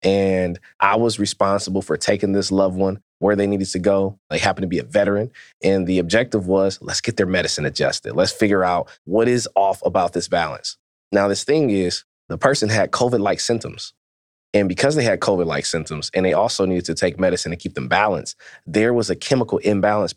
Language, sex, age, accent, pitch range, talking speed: English, male, 20-39, American, 90-105 Hz, 205 wpm